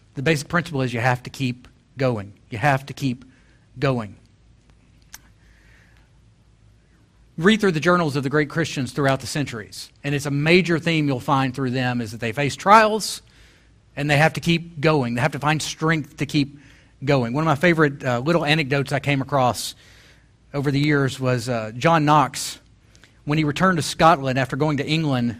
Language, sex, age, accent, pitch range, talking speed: English, male, 40-59, American, 125-170 Hz, 185 wpm